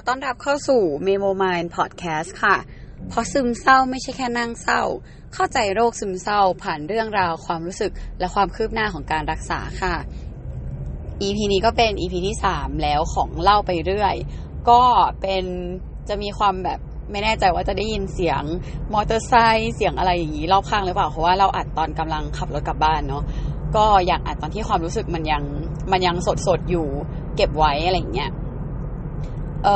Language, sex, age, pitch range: Thai, female, 20-39, 155-210 Hz